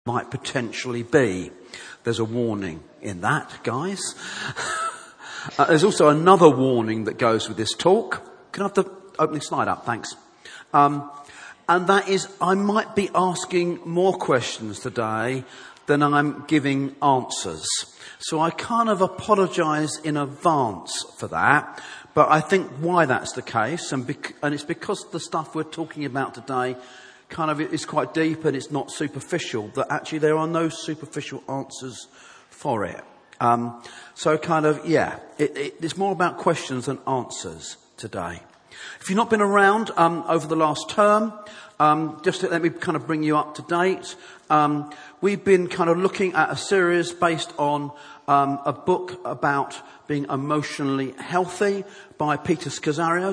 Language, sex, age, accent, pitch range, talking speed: English, male, 40-59, British, 140-180 Hz, 165 wpm